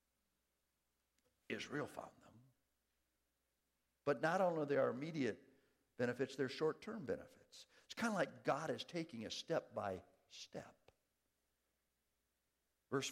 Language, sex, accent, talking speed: English, male, American, 115 wpm